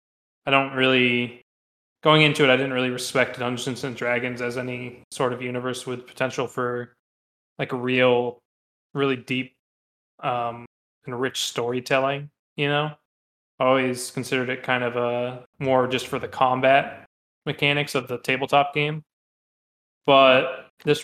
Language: English